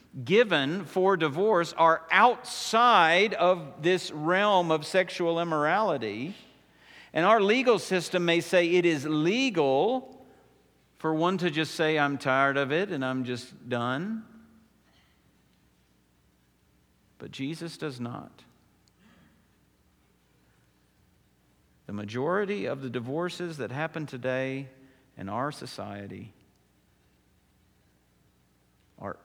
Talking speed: 100 wpm